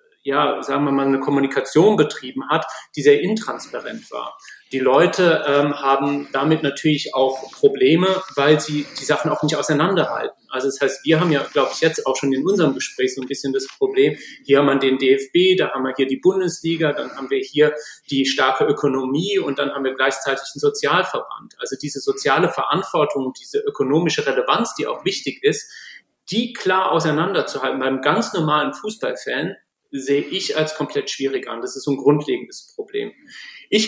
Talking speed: 180 wpm